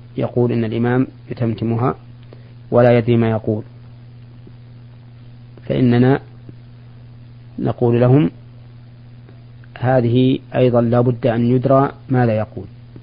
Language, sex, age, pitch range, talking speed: Arabic, male, 40-59, 120-125 Hz, 85 wpm